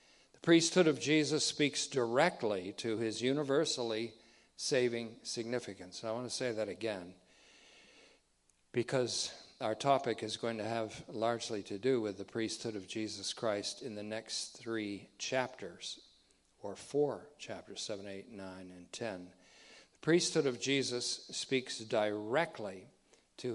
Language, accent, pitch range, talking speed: English, American, 105-135 Hz, 135 wpm